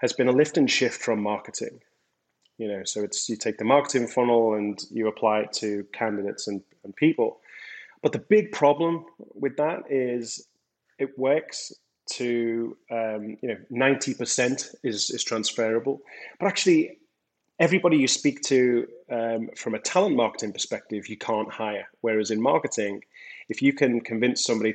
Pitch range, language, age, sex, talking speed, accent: 110-140 Hz, English, 30-49, male, 160 wpm, British